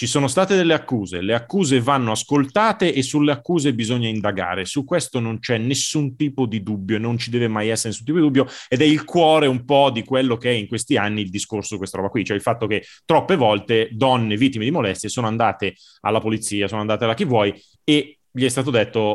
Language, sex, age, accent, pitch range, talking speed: Italian, male, 30-49, native, 110-150 Hz, 230 wpm